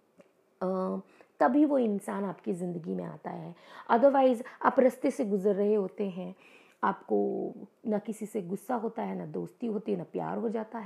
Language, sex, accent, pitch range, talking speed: Hindi, female, native, 190-230 Hz, 170 wpm